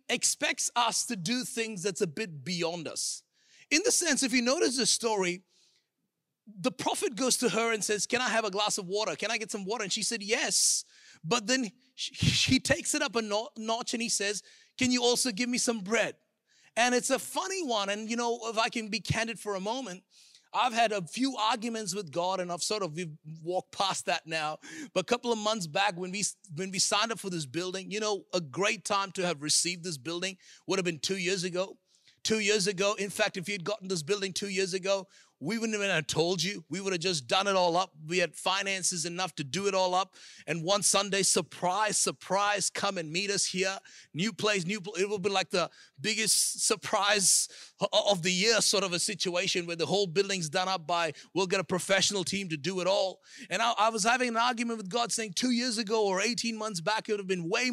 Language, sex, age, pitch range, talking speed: English, male, 30-49, 185-225 Hz, 235 wpm